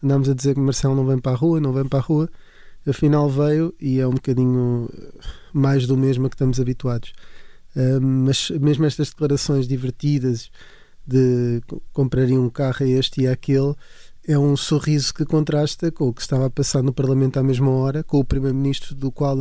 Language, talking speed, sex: Portuguese, 195 wpm, male